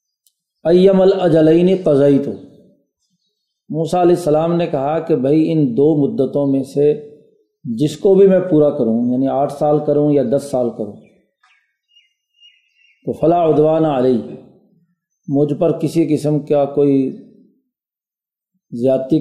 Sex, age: male, 40-59